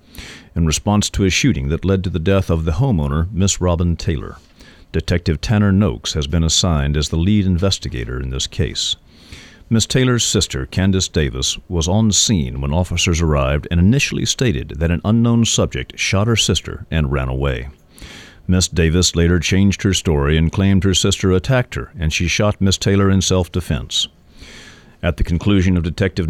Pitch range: 80-100 Hz